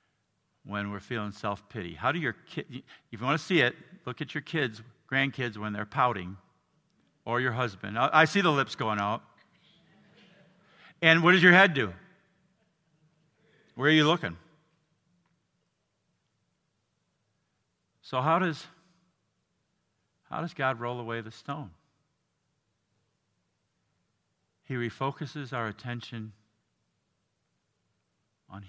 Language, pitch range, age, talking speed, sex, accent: English, 115-165 Hz, 50-69, 120 wpm, male, American